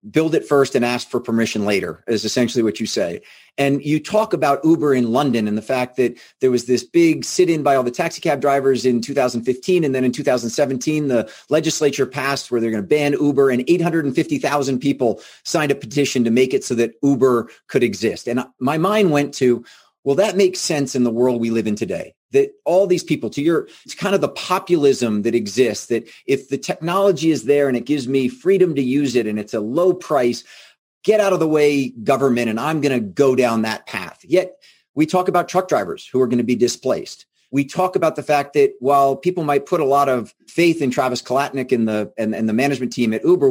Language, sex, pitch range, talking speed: English, male, 125-160 Hz, 220 wpm